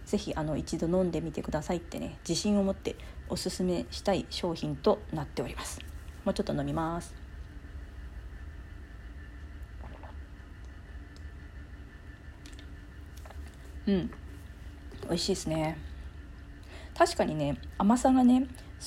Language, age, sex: Japanese, 40-59, female